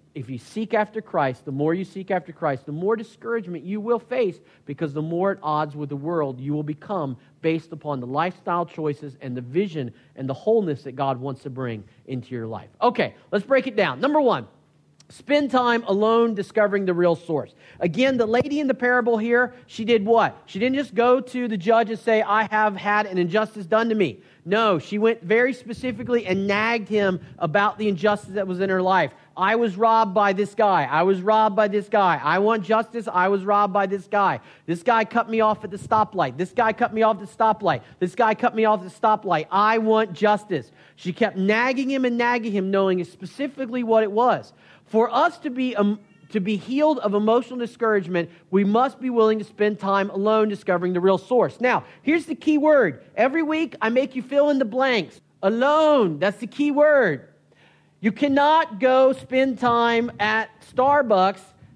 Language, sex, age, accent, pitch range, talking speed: English, male, 40-59, American, 185-240 Hz, 205 wpm